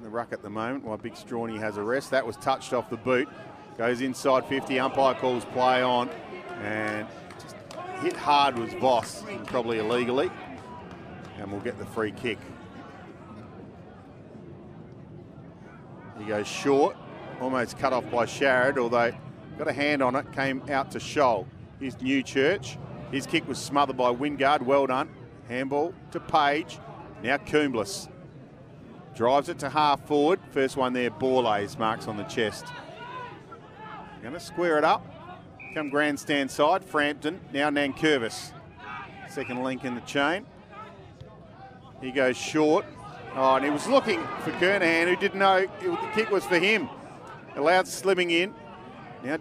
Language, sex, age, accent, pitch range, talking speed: English, male, 40-59, Australian, 125-165 Hz, 150 wpm